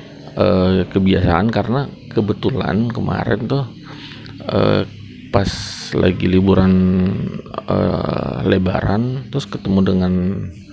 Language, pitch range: Indonesian, 90-115 Hz